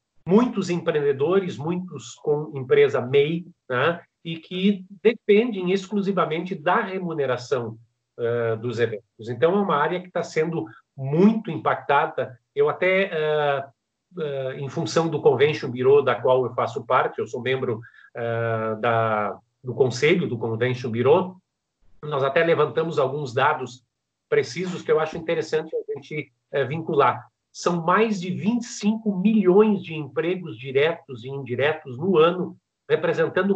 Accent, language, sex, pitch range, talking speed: Brazilian, Portuguese, male, 130-190 Hz, 125 wpm